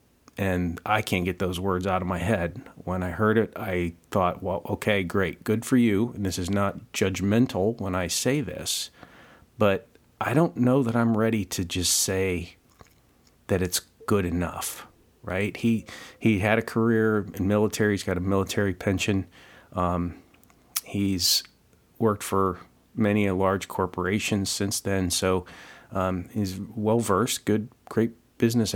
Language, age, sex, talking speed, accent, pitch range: English, 40-59, male, 155 wpm, American, 90-110 Hz